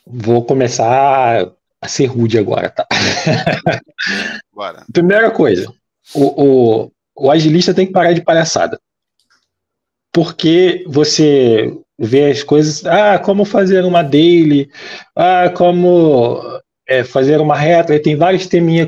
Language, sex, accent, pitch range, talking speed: Portuguese, male, Brazilian, 130-175 Hz, 120 wpm